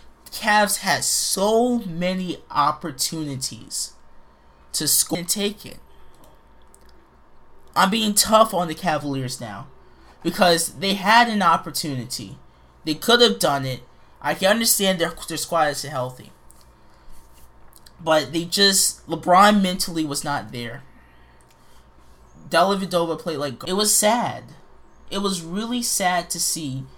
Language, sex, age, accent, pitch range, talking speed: English, male, 20-39, American, 120-170 Hz, 125 wpm